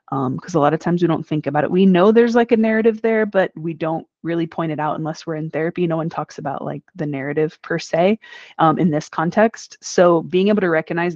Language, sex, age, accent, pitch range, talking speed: English, female, 20-39, American, 150-175 Hz, 255 wpm